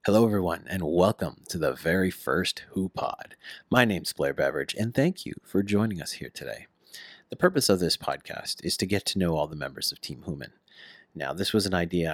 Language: English